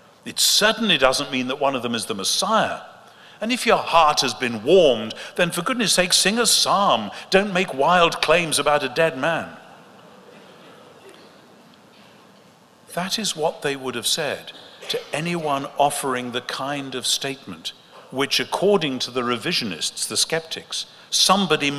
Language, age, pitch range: English, 50-69, 130-190 Hz